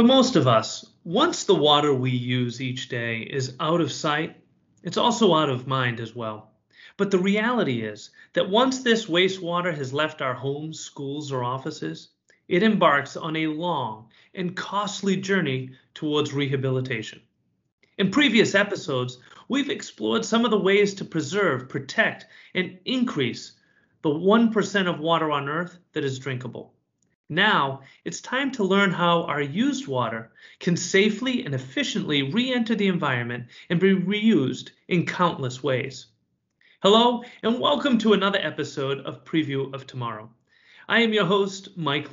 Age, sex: 40-59, male